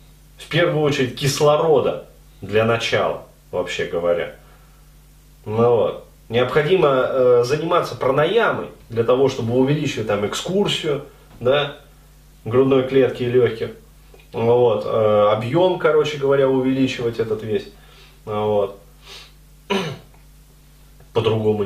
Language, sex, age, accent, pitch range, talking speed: Russian, male, 30-49, native, 125-180 Hz, 105 wpm